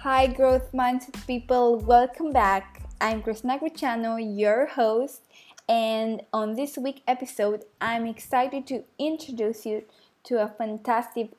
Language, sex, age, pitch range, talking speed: English, female, 20-39, 220-255 Hz, 125 wpm